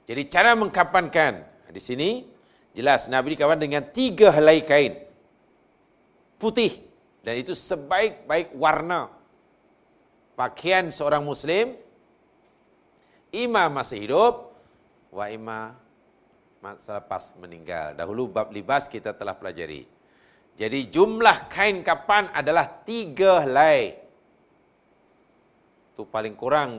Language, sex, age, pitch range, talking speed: Malayalam, male, 50-69, 125-175 Hz, 100 wpm